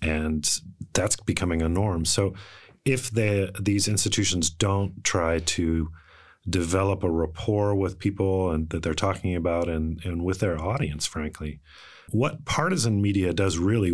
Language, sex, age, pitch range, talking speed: English, male, 30-49, 85-105 Hz, 145 wpm